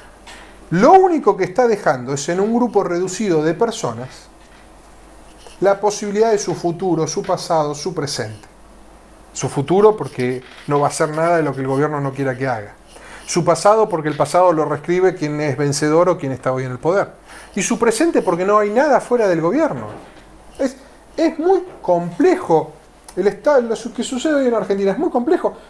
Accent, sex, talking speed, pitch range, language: Argentinian, male, 185 wpm, 145-215 Hz, Spanish